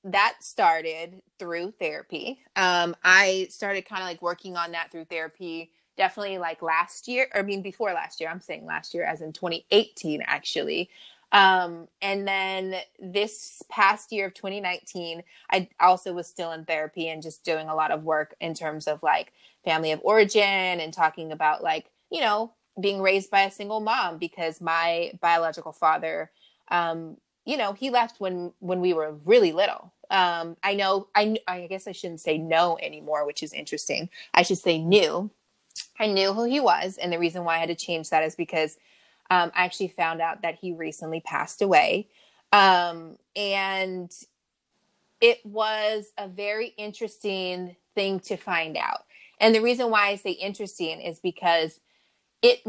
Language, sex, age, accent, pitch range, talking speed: English, female, 20-39, American, 165-200 Hz, 175 wpm